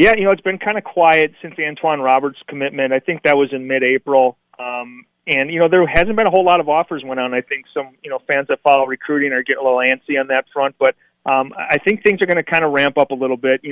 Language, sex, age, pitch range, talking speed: English, male, 30-49, 135-150 Hz, 290 wpm